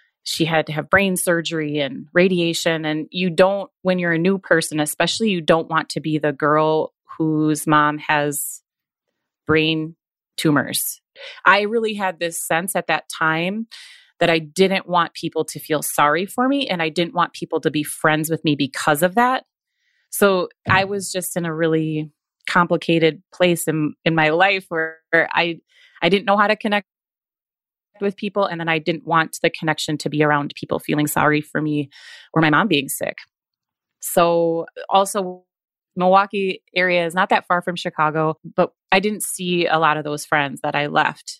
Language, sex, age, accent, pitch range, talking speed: English, female, 30-49, American, 155-185 Hz, 185 wpm